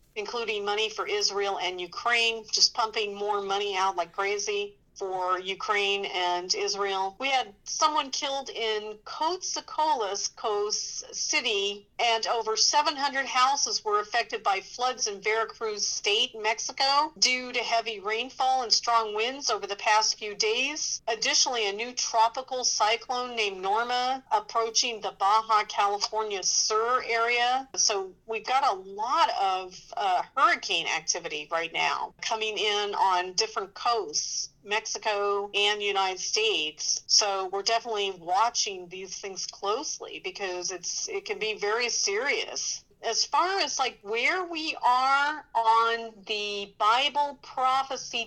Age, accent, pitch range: 50-69, American, 210-275 Hz